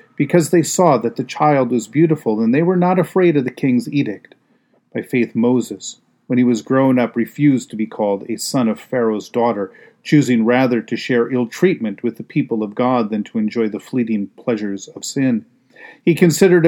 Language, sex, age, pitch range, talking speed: English, male, 40-59, 115-145 Hz, 195 wpm